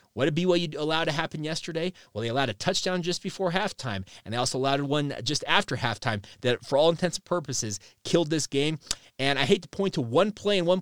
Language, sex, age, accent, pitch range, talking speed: English, male, 30-49, American, 125-170 Hz, 235 wpm